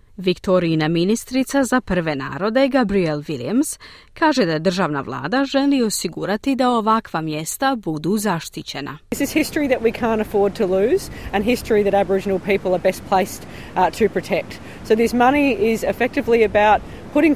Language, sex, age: Croatian, female, 40-59